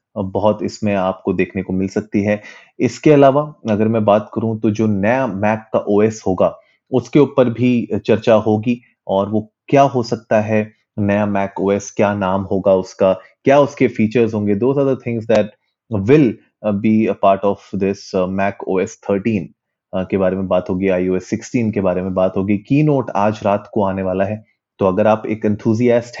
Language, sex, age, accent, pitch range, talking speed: Hindi, male, 30-49, native, 100-115 Hz, 185 wpm